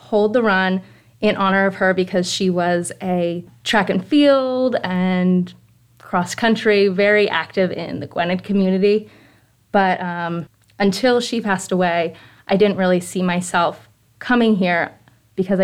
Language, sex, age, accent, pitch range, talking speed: English, female, 20-39, American, 170-195 Hz, 140 wpm